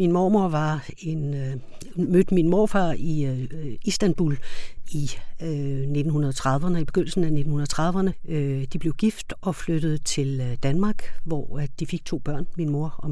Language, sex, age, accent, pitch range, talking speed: Danish, female, 60-79, native, 140-170 Hz, 165 wpm